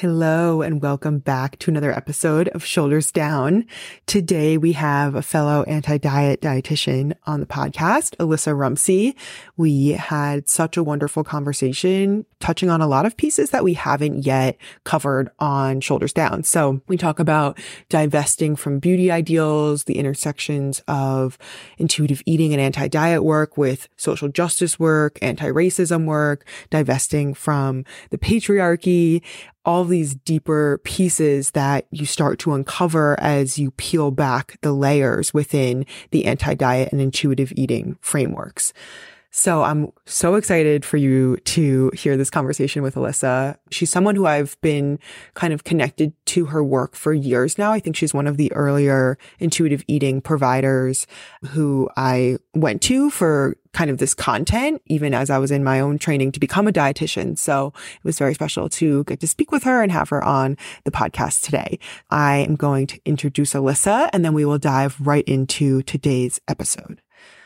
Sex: female